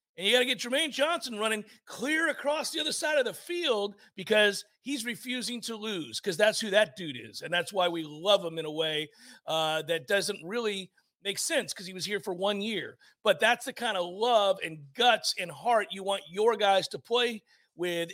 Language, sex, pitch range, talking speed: English, male, 185-265 Hz, 220 wpm